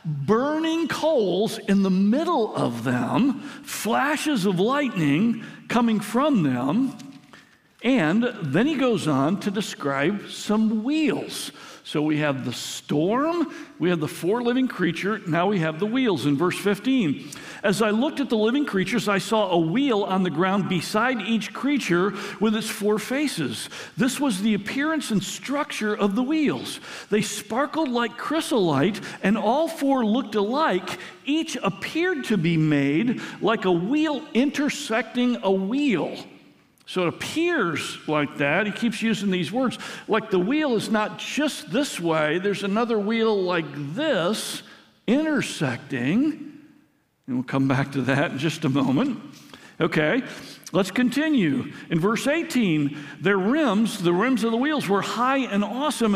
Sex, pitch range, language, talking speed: male, 190-275 Hz, English, 150 wpm